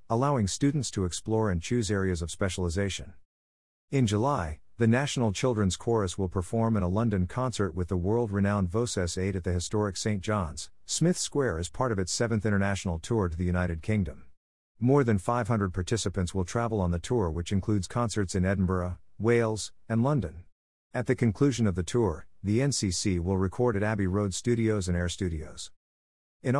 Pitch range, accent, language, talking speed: 90-115 Hz, American, English, 180 wpm